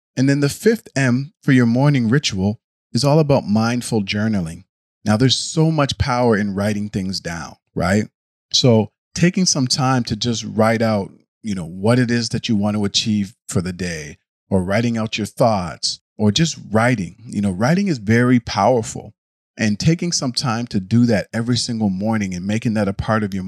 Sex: male